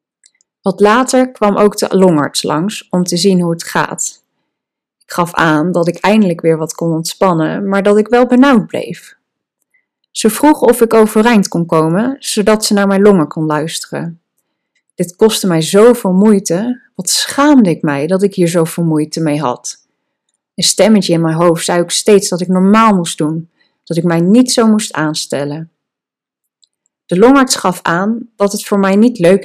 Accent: Dutch